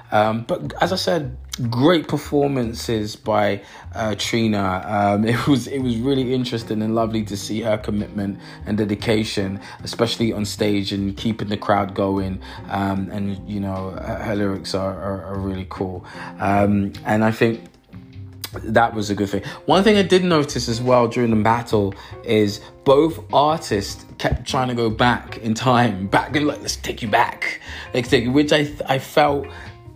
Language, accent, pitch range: English, British, 105-130 Hz